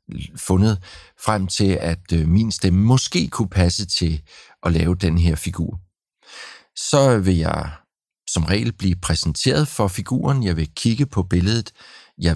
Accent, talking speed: Danish, 145 wpm